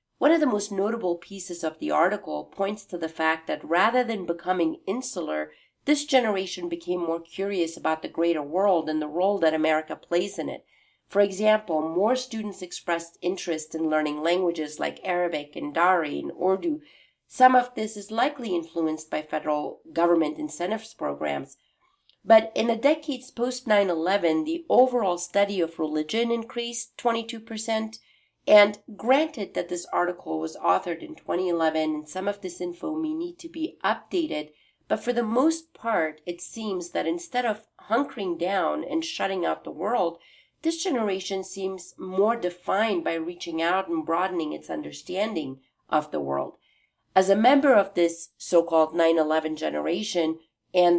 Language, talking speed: English, 160 wpm